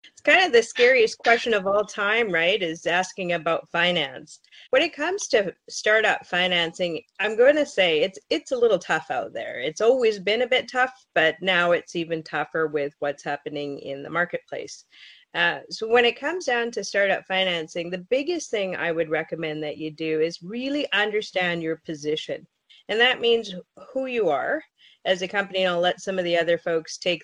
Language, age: English, 30-49